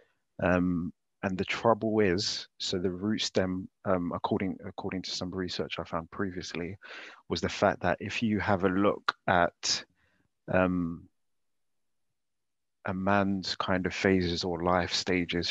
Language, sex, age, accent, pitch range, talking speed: English, male, 30-49, British, 90-100 Hz, 145 wpm